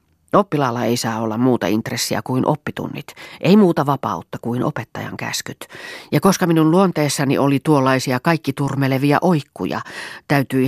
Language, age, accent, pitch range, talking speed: Finnish, 40-59, native, 115-150 Hz, 135 wpm